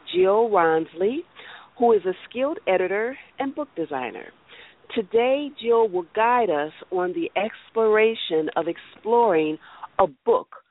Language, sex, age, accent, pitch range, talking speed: English, female, 40-59, American, 170-255 Hz, 125 wpm